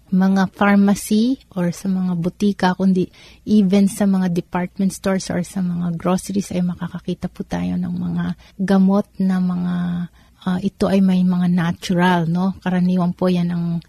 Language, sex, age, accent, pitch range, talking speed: Filipino, female, 30-49, native, 175-200 Hz, 155 wpm